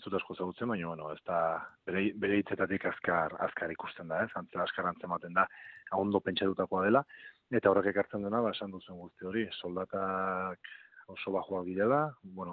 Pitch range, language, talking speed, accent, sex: 95-105 Hz, Polish, 170 wpm, Spanish, male